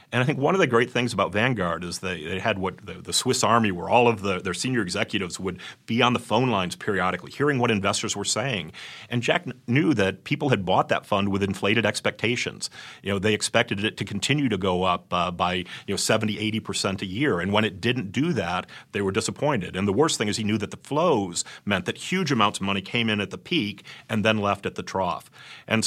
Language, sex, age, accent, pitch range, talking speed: English, male, 40-59, American, 95-120 Hz, 245 wpm